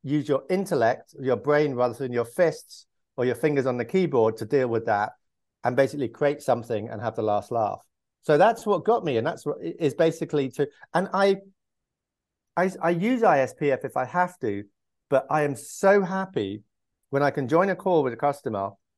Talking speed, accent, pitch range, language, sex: 200 wpm, British, 120-165 Hz, English, male